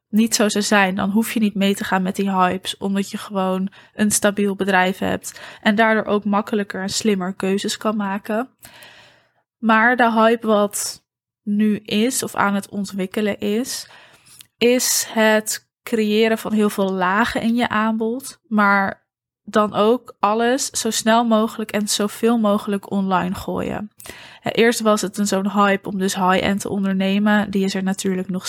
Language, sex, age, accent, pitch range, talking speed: Dutch, female, 20-39, Dutch, 195-220 Hz, 165 wpm